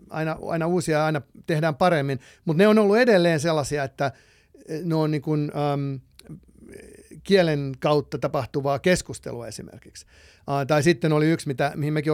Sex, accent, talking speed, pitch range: male, native, 155 wpm, 140-175 Hz